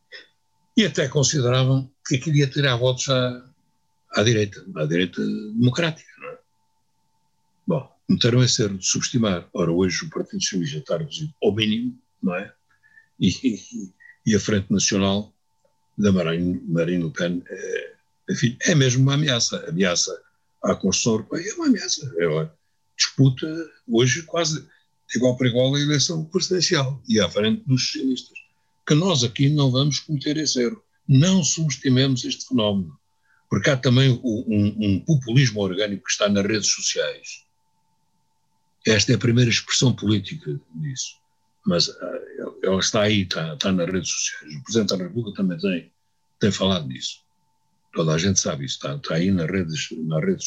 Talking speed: 155 wpm